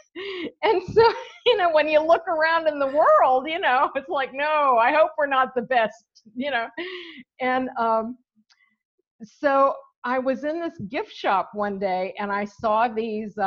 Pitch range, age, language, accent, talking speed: 215-295 Hz, 50-69, English, American, 175 wpm